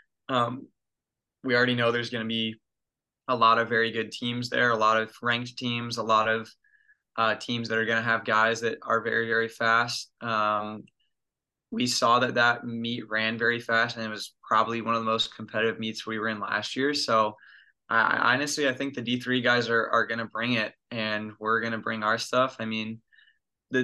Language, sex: English, male